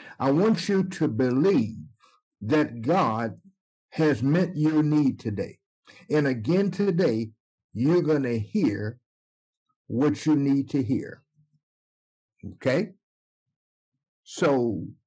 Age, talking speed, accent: 60-79, 105 wpm, American